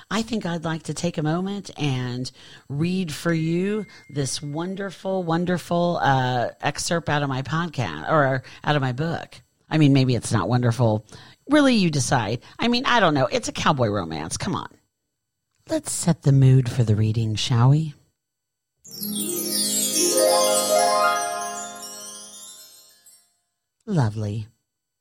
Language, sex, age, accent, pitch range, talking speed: English, female, 50-69, American, 115-155 Hz, 135 wpm